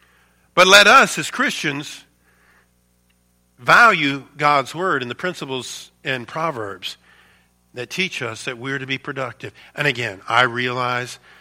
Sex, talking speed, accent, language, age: male, 130 wpm, American, English, 50-69